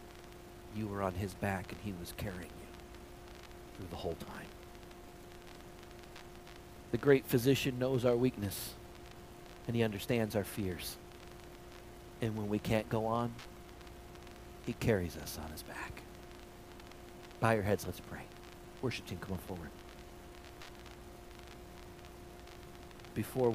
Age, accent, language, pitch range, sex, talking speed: 40-59, American, English, 90-115 Hz, male, 120 wpm